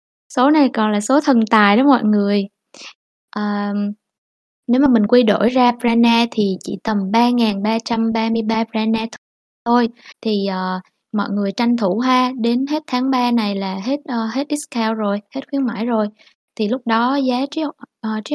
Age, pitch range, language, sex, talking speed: 20-39, 210-255 Hz, Vietnamese, female, 180 wpm